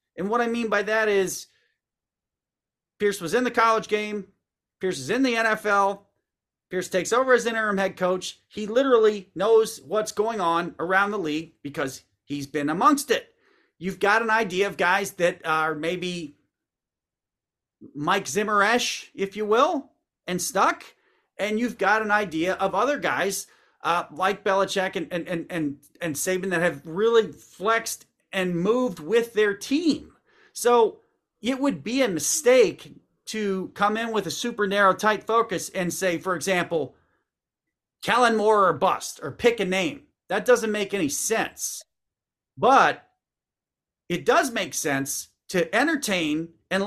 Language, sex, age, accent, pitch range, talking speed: English, male, 40-59, American, 180-235 Hz, 155 wpm